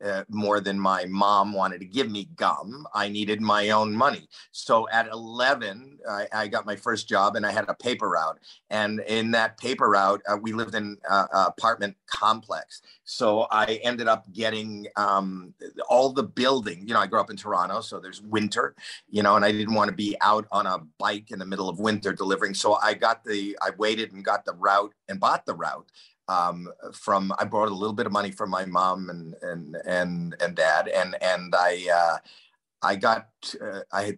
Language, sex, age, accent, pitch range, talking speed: English, male, 50-69, American, 95-110 Hz, 205 wpm